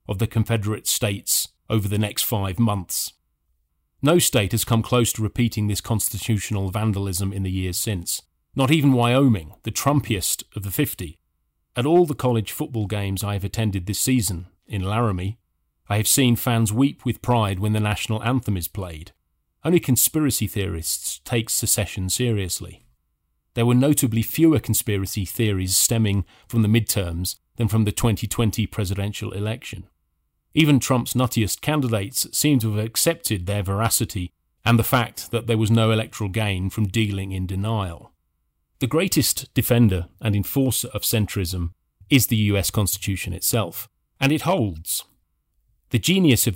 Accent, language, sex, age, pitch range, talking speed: British, English, male, 40-59, 95-120 Hz, 155 wpm